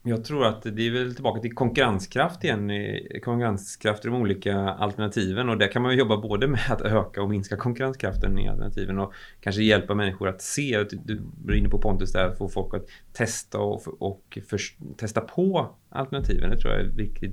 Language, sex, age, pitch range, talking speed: Swedish, male, 30-49, 100-125 Hz, 205 wpm